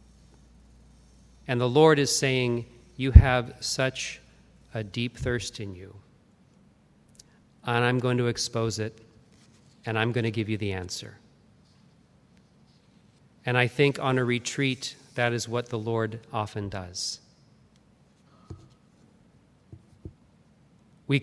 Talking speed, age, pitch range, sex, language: 115 wpm, 40-59, 110-145 Hz, male, English